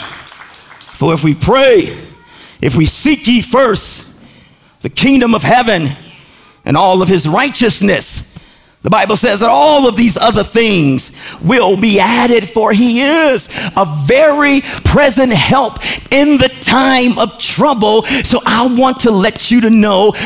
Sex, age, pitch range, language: male, 40-59, 155-215 Hz, English